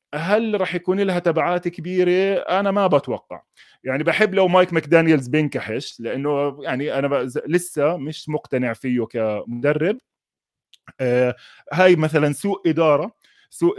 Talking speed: 120 wpm